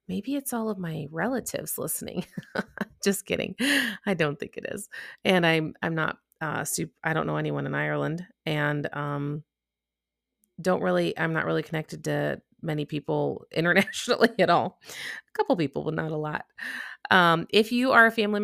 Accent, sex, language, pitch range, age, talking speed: American, female, English, 150-195 Hz, 30-49, 170 wpm